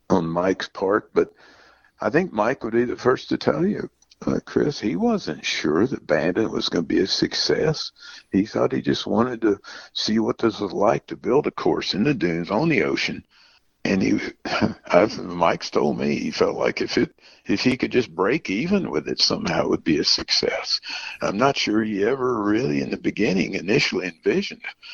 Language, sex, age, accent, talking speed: English, male, 60-79, American, 195 wpm